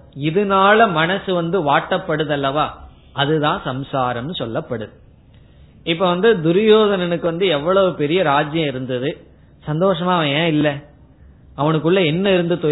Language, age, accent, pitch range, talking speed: Tamil, 20-39, native, 140-180 Hz, 105 wpm